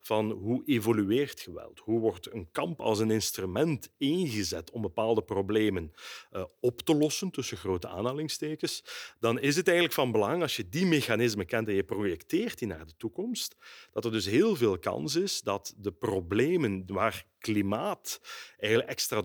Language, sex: Dutch, male